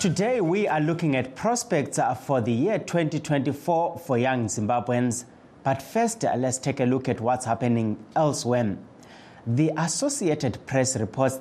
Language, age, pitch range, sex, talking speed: English, 30-49, 115-130 Hz, male, 140 wpm